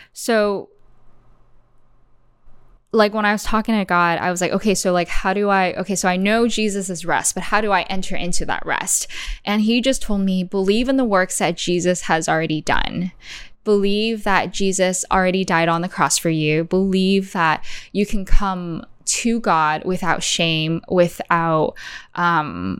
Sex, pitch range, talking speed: female, 170-195 Hz, 175 wpm